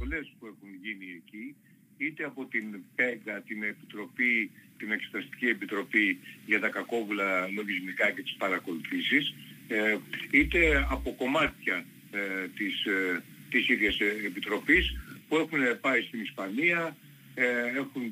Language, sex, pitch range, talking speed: Greek, male, 105-145 Hz, 110 wpm